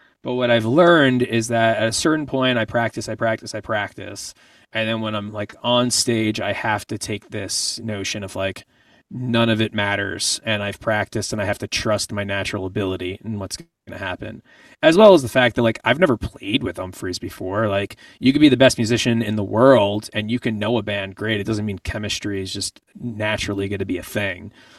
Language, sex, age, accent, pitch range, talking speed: English, male, 30-49, American, 100-120 Hz, 225 wpm